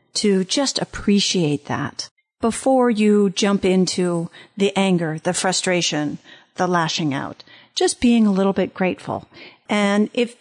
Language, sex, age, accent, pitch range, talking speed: English, female, 40-59, American, 190-250 Hz, 135 wpm